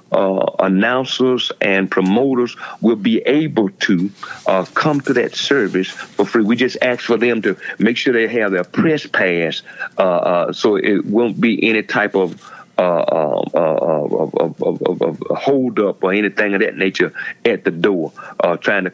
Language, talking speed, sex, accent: English, 175 wpm, male, American